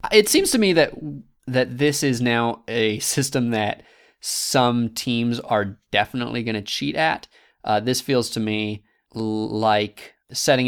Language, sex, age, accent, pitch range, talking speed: English, male, 20-39, American, 110-145 Hz, 150 wpm